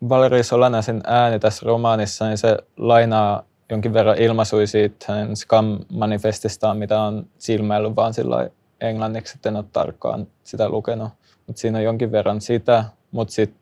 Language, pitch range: Finnish, 105-115 Hz